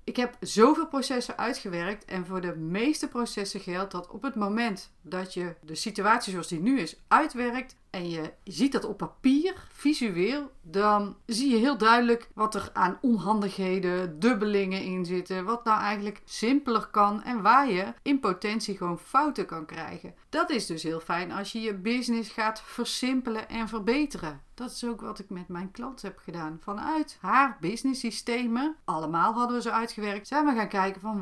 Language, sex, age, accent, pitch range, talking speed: Dutch, female, 40-59, Dutch, 185-245 Hz, 180 wpm